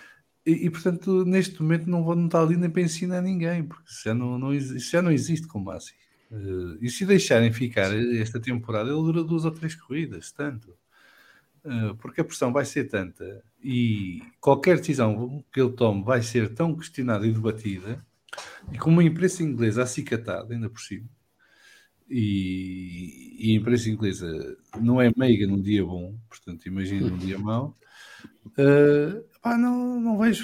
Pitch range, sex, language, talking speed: 110-160 Hz, male, English, 175 wpm